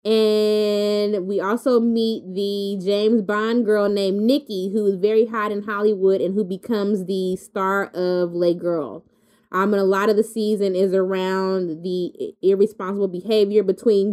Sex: female